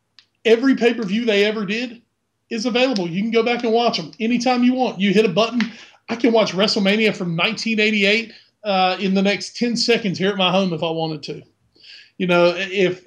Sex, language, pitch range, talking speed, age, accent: male, English, 175-205 Hz, 200 wpm, 30-49, American